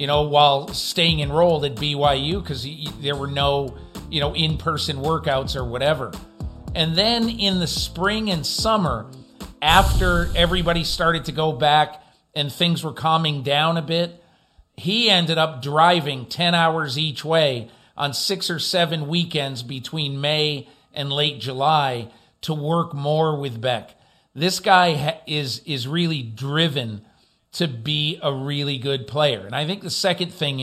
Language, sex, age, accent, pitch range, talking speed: English, male, 50-69, American, 140-180 Hz, 155 wpm